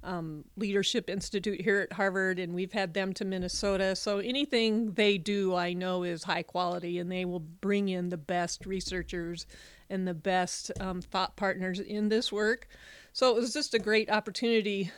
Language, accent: English, American